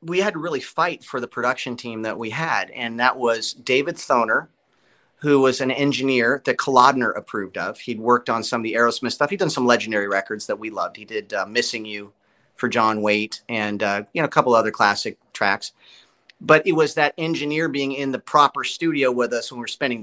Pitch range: 120-155 Hz